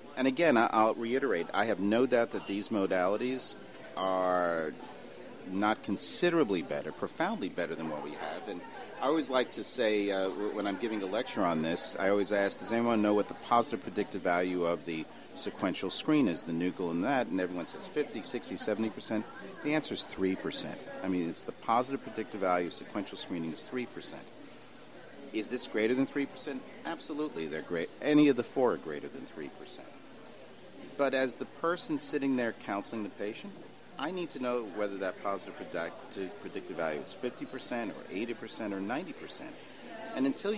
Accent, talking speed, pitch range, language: American, 185 wpm, 95-135 Hz, English